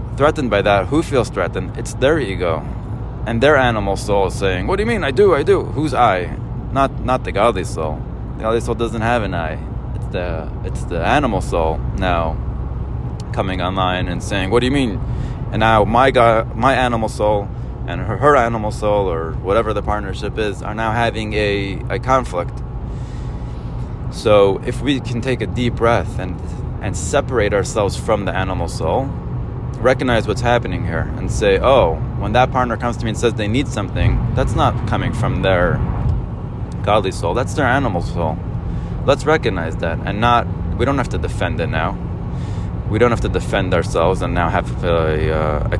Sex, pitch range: male, 100-120 Hz